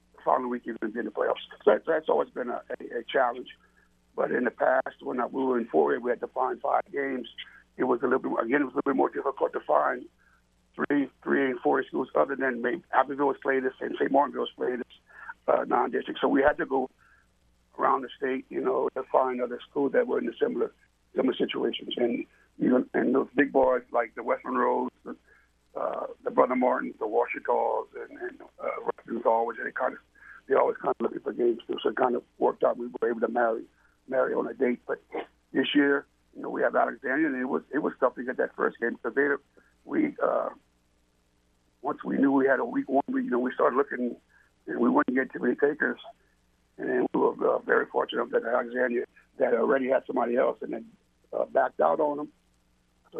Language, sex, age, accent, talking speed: English, male, 60-79, American, 225 wpm